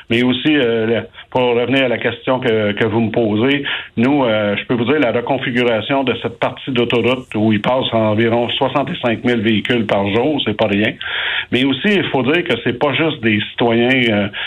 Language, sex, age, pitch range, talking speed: French, male, 60-79, 110-135 Hz, 205 wpm